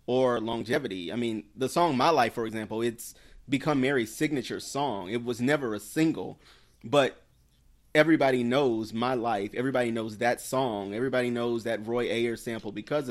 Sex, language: male, English